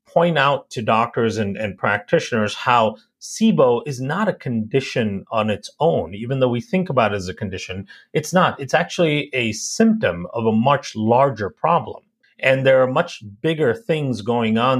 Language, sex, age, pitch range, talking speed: English, male, 40-59, 110-140 Hz, 180 wpm